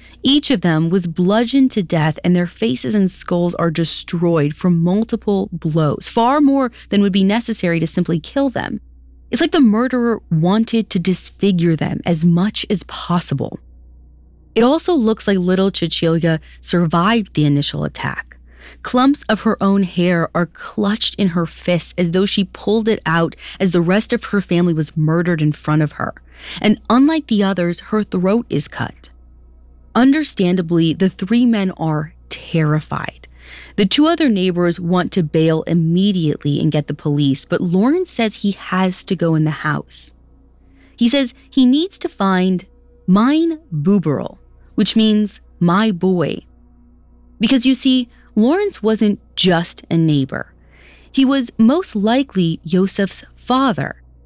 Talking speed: 155 wpm